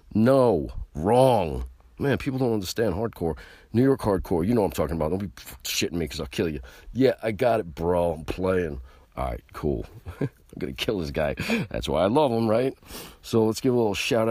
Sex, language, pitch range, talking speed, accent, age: male, English, 75-100 Hz, 220 wpm, American, 50-69